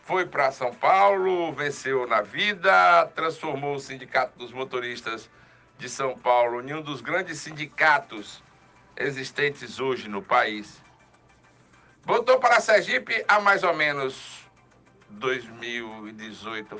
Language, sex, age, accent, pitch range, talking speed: Portuguese, male, 60-79, Brazilian, 120-155 Hz, 115 wpm